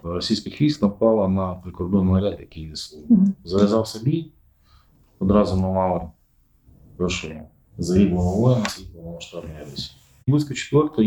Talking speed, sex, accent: 105 wpm, male, native